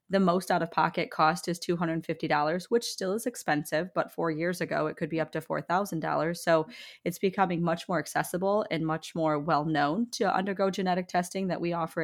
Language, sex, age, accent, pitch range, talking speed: English, female, 20-39, American, 155-175 Hz, 185 wpm